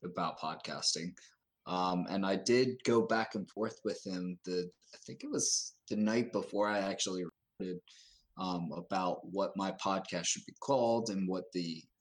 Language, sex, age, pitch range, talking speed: English, male, 20-39, 90-105 Hz, 170 wpm